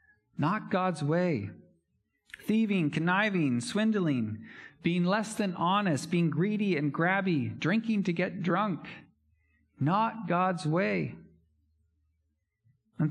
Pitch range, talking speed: 130-185 Hz, 100 wpm